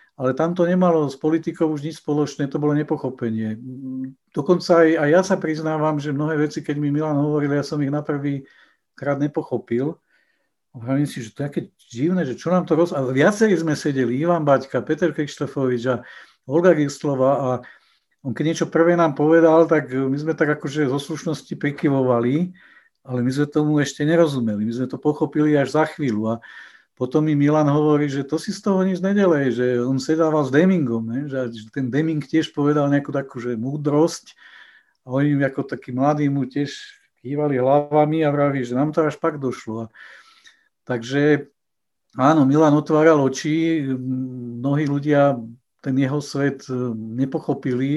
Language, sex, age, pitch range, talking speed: Czech, male, 50-69, 130-155 Hz, 170 wpm